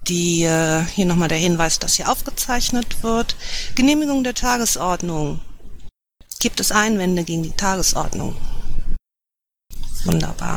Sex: female